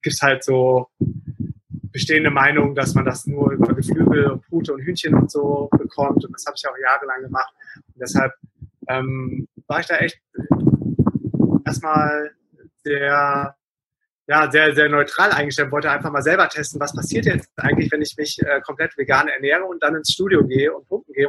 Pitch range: 140-155 Hz